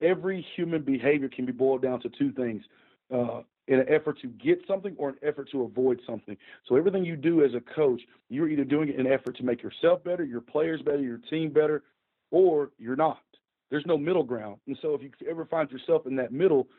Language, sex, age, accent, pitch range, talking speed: English, male, 40-59, American, 130-160 Hz, 230 wpm